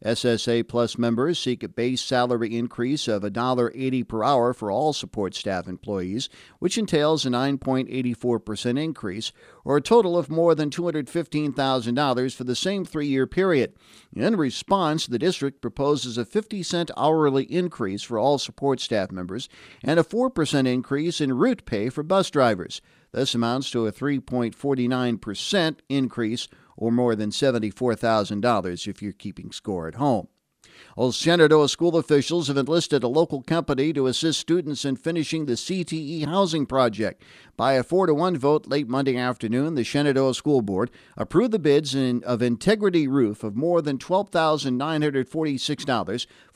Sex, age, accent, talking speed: male, 50-69, American, 145 wpm